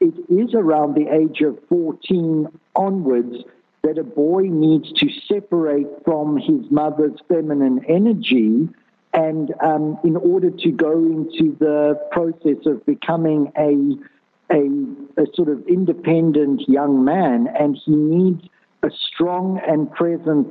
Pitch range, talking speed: 150-205 Hz, 130 wpm